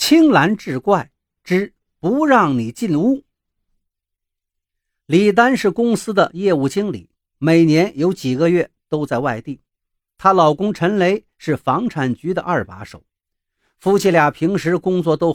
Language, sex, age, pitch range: Chinese, male, 50-69, 125-200 Hz